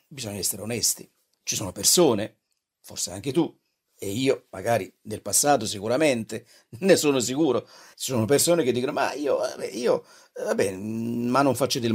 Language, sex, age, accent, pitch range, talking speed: Italian, male, 50-69, native, 110-145 Hz, 155 wpm